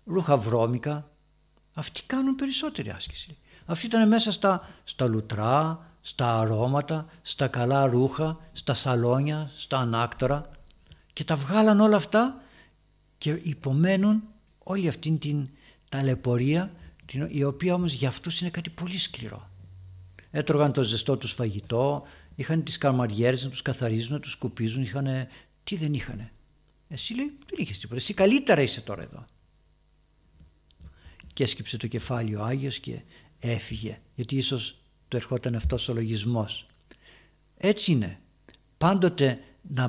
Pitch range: 115-155 Hz